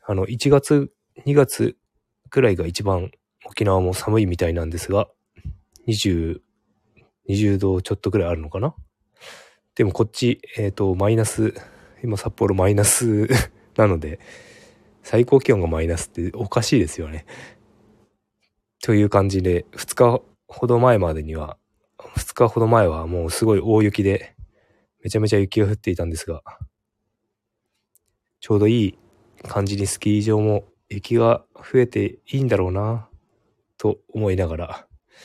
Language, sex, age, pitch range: Japanese, male, 20-39, 85-110 Hz